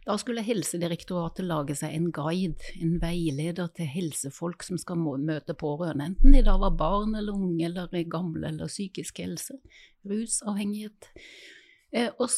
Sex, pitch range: female, 170-225 Hz